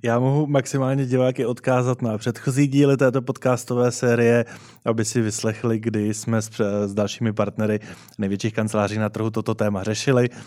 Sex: male